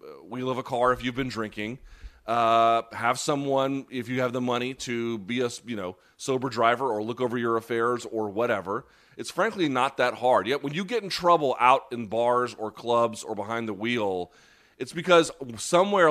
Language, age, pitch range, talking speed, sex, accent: English, 30-49, 115-140 Hz, 195 wpm, male, American